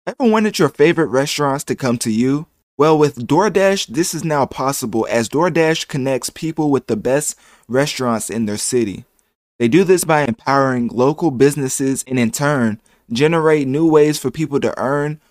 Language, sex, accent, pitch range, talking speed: English, male, American, 120-150 Hz, 175 wpm